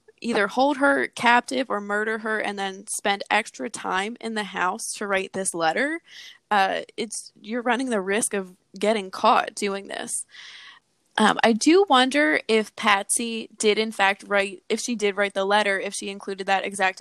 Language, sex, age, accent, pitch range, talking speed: English, female, 20-39, American, 195-235 Hz, 180 wpm